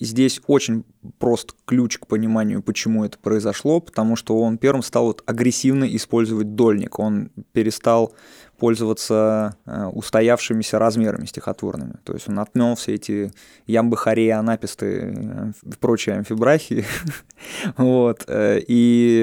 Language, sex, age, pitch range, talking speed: Russian, male, 20-39, 110-125 Hz, 110 wpm